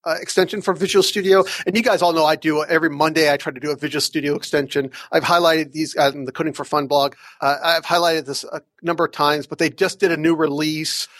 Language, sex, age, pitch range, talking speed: English, male, 40-59, 145-170 Hz, 255 wpm